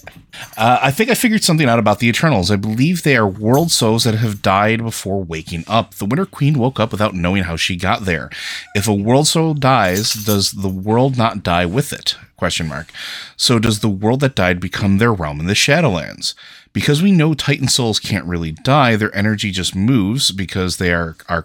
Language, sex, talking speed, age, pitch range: English, male, 210 wpm, 30-49, 90-120 Hz